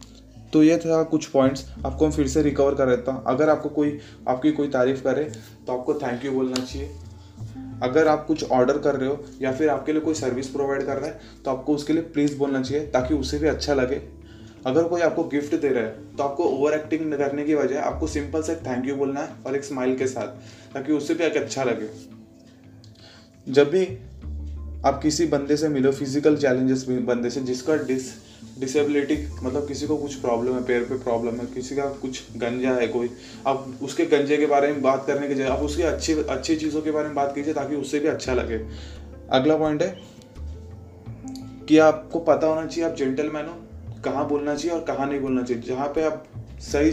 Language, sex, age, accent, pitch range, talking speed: Hindi, male, 20-39, native, 125-150 Hz, 215 wpm